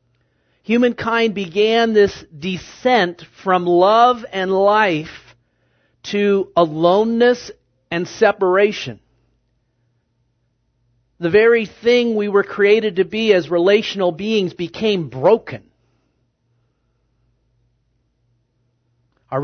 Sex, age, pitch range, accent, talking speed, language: male, 50-69, 125-210 Hz, American, 80 wpm, English